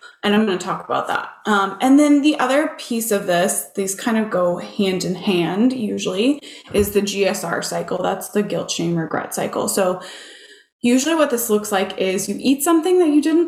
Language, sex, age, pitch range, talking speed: English, female, 20-39, 185-255 Hz, 205 wpm